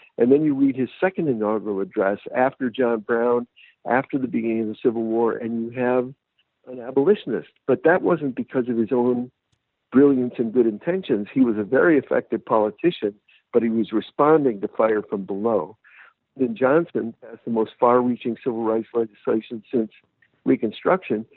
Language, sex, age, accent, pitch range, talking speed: English, male, 60-79, American, 110-135 Hz, 165 wpm